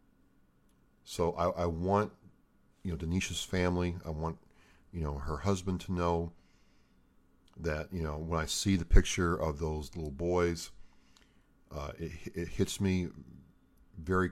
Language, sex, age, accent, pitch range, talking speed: English, male, 50-69, American, 80-95 Hz, 145 wpm